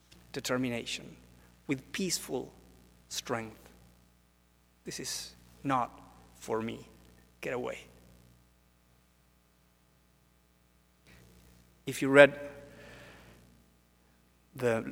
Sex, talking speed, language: male, 60 wpm, English